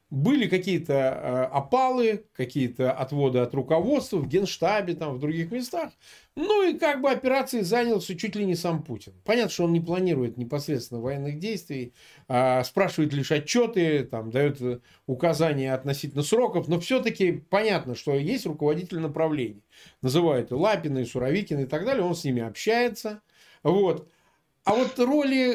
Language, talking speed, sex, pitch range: Russian, 145 wpm, male, 145-230 Hz